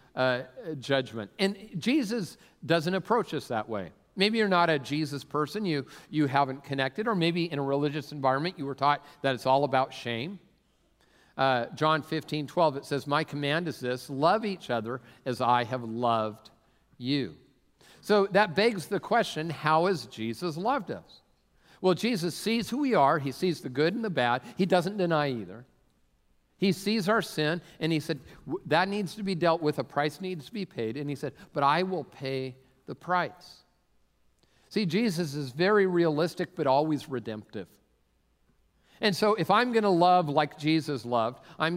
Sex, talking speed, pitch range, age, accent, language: male, 180 wpm, 135-180 Hz, 50-69, American, English